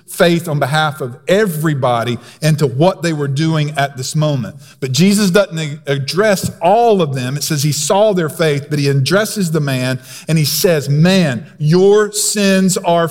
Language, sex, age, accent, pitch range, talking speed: English, male, 50-69, American, 160-235 Hz, 180 wpm